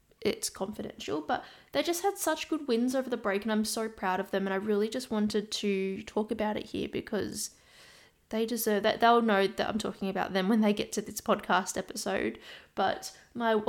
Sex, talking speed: female, 210 wpm